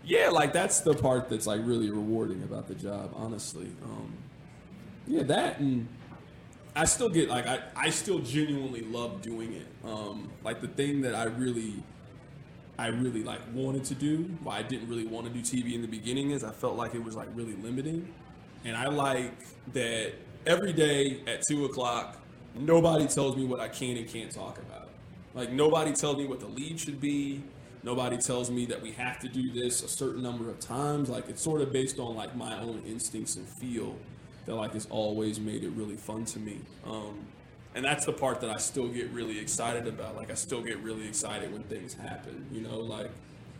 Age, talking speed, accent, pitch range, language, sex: 20-39, 205 wpm, American, 110-135 Hz, English, male